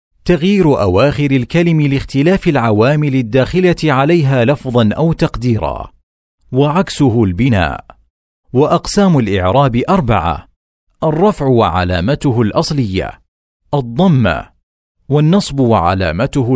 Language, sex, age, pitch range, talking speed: Arabic, male, 40-59, 95-150 Hz, 75 wpm